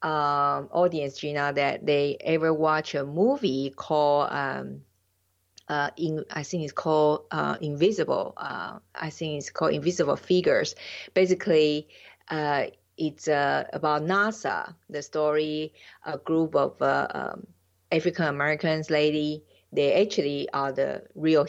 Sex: female